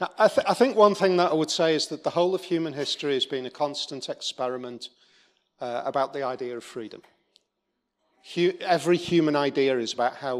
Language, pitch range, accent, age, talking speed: English, 120-145 Hz, British, 40-59, 190 wpm